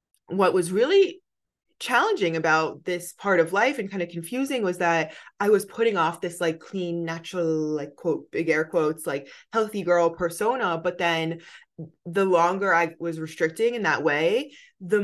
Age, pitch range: 20-39, 170-210 Hz